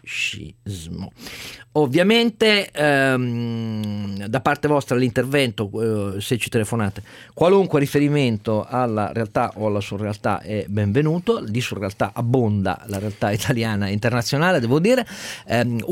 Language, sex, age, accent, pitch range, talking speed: Italian, male, 40-59, native, 105-130 Hz, 115 wpm